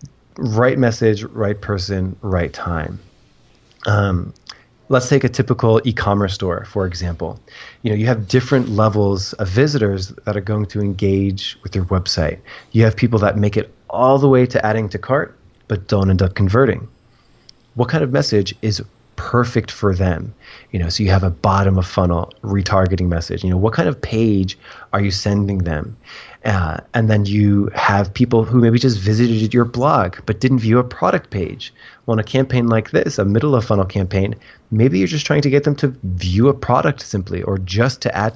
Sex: male